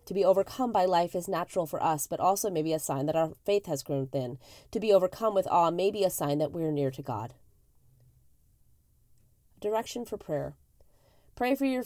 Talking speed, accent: 215 wpm, American